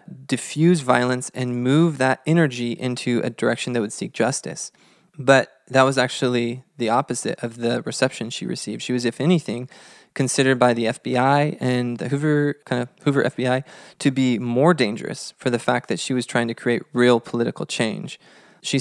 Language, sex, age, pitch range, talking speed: English, male, 20-39, 120-145 Hz, 180 wpm